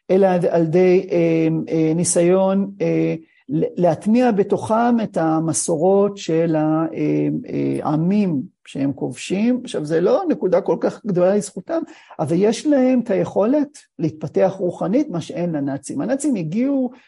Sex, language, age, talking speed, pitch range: male, Hebrew, 50-69, 125 wpm, 165-230 Hz